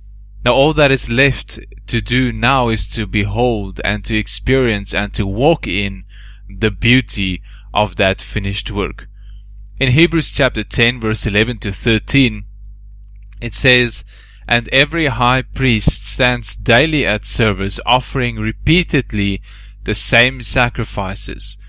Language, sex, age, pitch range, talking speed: English, male, 20-39, 100-120 Hz, 130 wpm